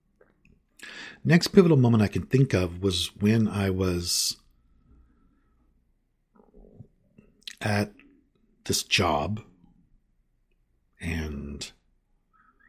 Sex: male